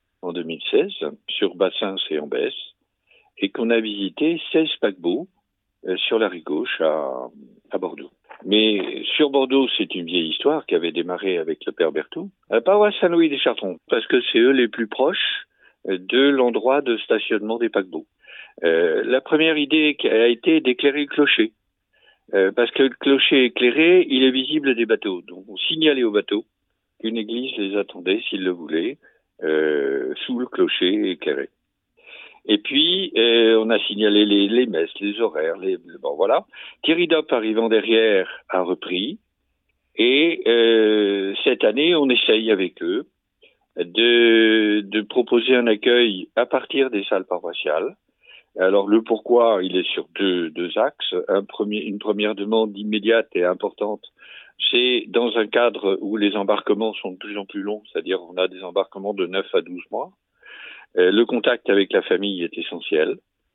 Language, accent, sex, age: French, French, male, 60-79